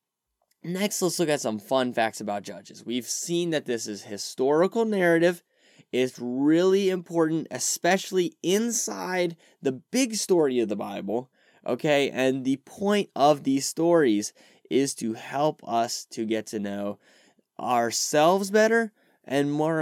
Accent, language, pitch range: American, English, 110-165 Hz